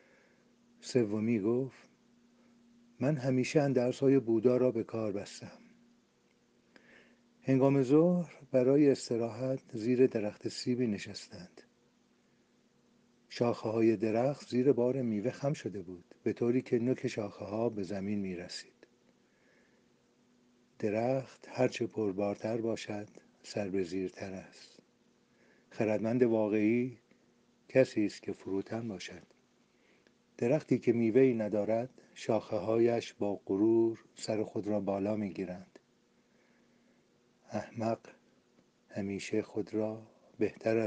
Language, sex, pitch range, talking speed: Persian, male, 110-130 Hz, 100 wpm